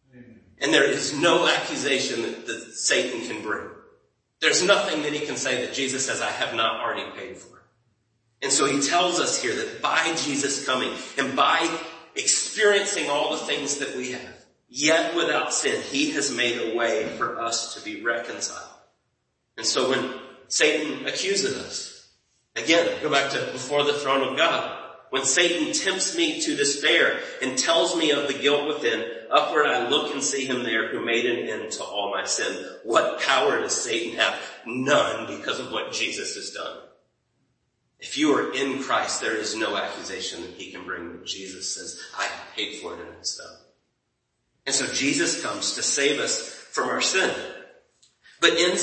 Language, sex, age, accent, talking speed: English, male, 30-49, American, 180 wpm